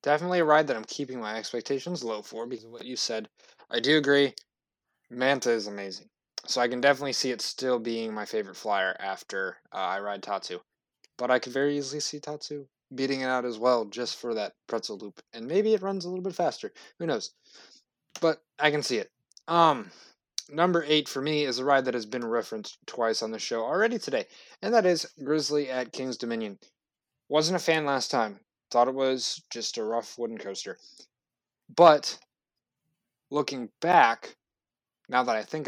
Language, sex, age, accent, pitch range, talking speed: English, male, 20-39, American, 120-160 Hz, 190 wpm